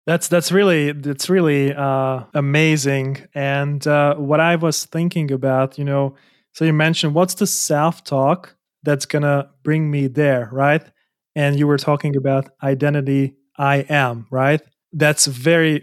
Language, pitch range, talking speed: English, 135-155 Hz, 150 wpm